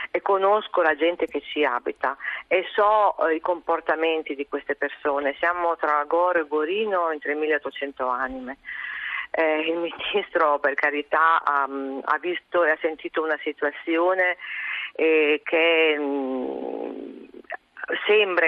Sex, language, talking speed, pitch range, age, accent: female, Italian, 125 wpm, 140-170 Hz, 40-59, native